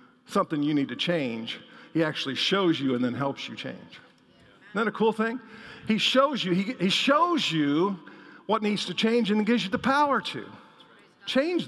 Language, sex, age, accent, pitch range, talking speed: English, male, 50-69, American, 175-245 Hz, 195 wpm